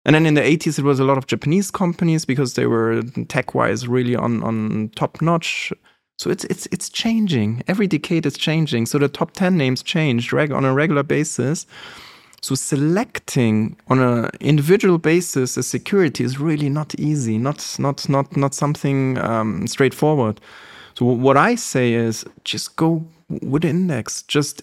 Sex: male